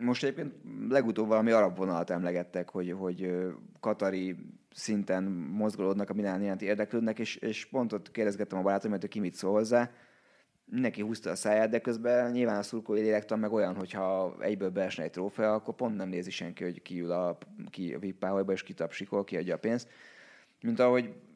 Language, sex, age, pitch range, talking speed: Hungarian, male, 20-39, 95-115 Hz, 170 wpm